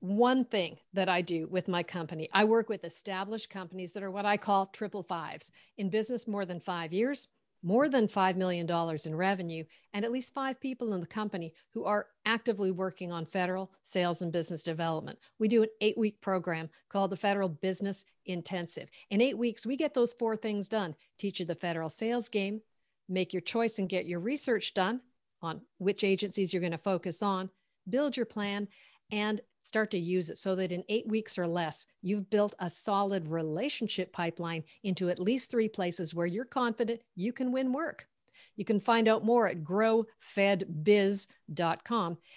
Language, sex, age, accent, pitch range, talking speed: English, female, 50-69, American, 180-225 Hz, 185 wpm